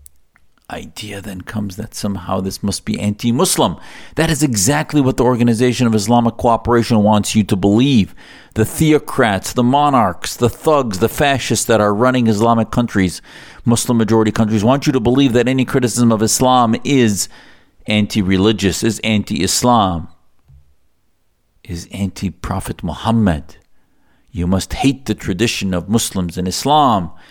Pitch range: 90-115 Hz